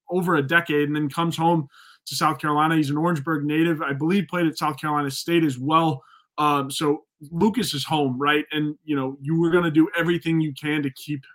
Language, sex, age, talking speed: English, male, 20-39, 220 wpm